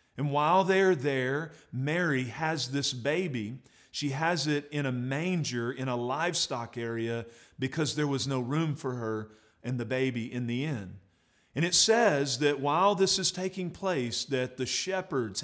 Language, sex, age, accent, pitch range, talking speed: English, male, 40-59, American, 130-170 Hz, 165 wpm